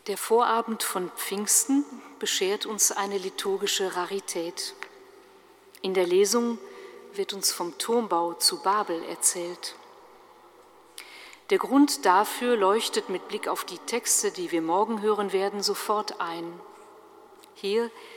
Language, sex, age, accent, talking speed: German, female, 50-69, German, 120 wpm